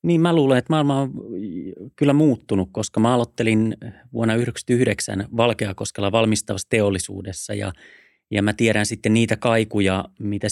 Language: Finnish